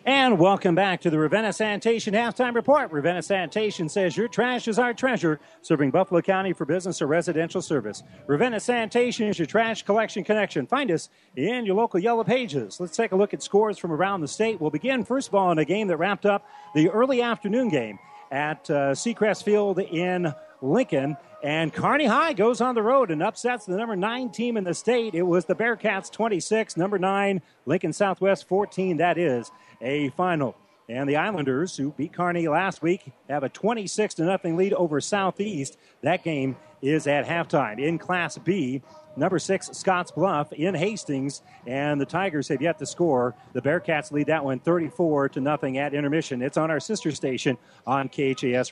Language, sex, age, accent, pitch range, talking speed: English, male, 40-59, American, 150-205 Hz, 190 wpm